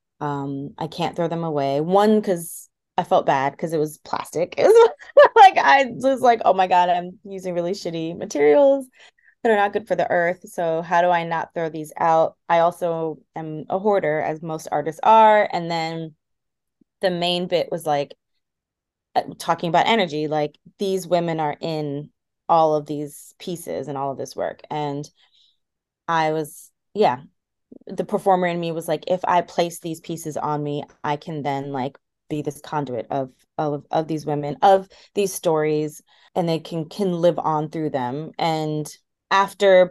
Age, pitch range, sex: 20-39, 150-180 Hz, female